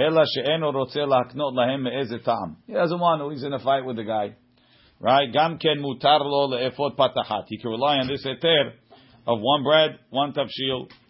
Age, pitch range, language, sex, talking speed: 50-69, 120-150 Hz, English, male, 125 wpm